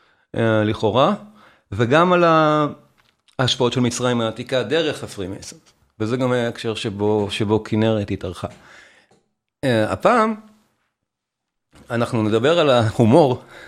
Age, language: 40-59, Hebrew